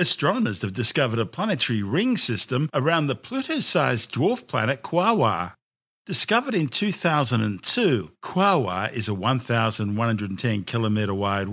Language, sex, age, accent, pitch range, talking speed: English, male, 50-69, Australian, 105-135 Hz, 120 wpm